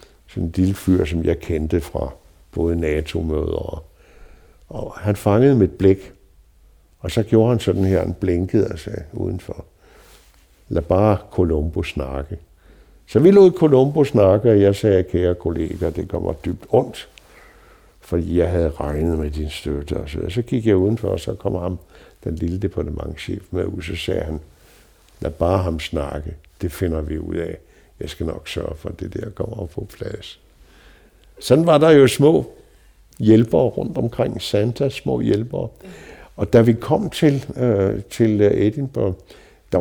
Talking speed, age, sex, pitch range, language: 165 wpm, 60-79, male, 80-110 Hz, Danish